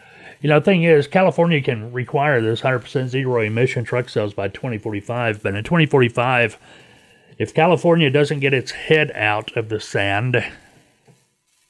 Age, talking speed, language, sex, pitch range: 30-49, 150 wpm, English, male, 110-145 Hz